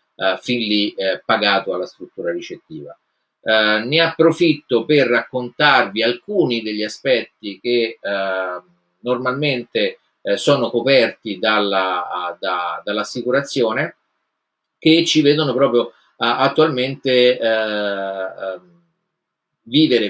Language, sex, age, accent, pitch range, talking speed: Italian, male, 30-49, native, 110-155 Hz, 70 wpm